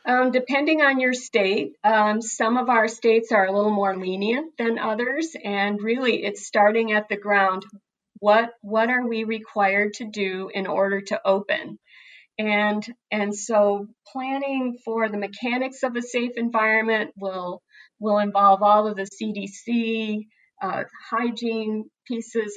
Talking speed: 150 wpm